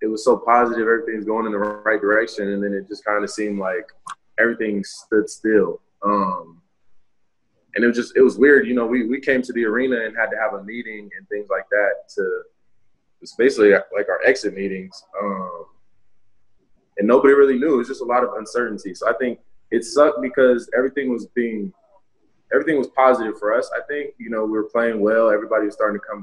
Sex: male